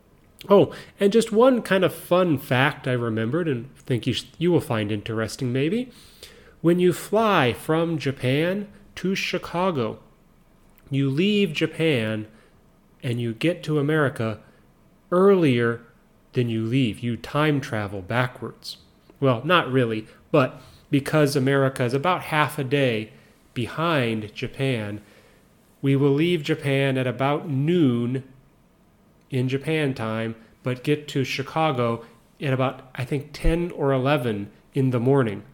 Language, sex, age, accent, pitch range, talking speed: English, male, 30-49, American, 120-160 Hz, 135 wpm